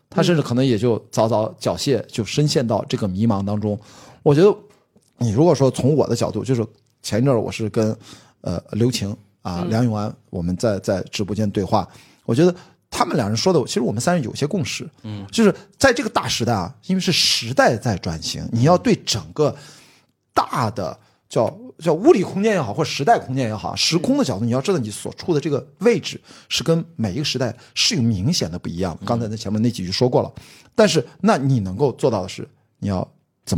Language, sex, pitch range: Chinese, male, 110-165 Hz